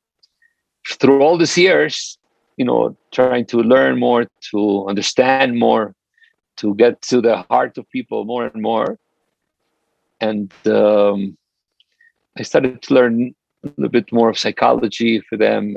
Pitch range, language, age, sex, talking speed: 115-140 Hz, English, 50-69, male, 140 wpm